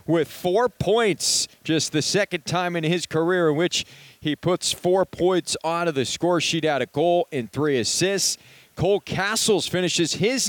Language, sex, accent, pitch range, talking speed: English, male, American, 145-185 Hz, 170 wpm